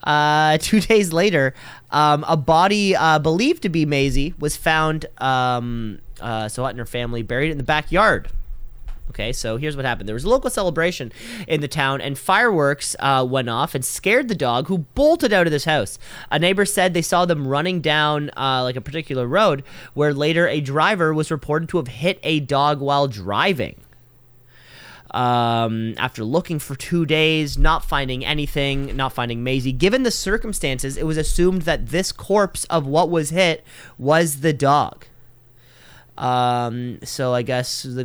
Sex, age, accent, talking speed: male, 20-39, American, 175 wpm